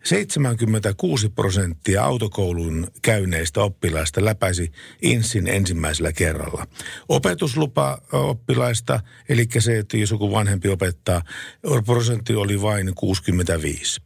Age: 50-69